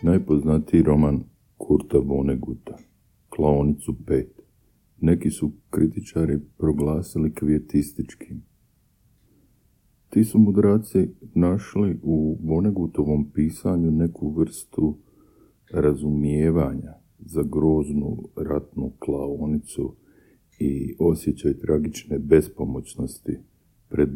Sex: male